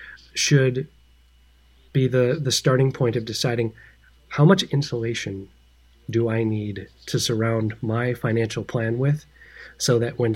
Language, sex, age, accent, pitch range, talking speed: English, male, 30-49, American, 115-135 Hz, 135 wpm